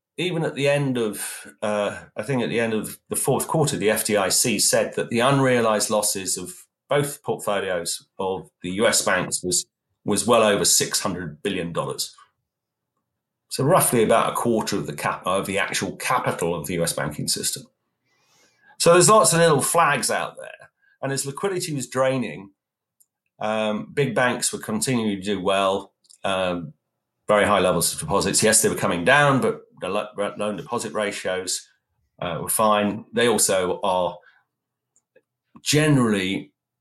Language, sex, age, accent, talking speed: English, male, 40-59, British, 160 wpm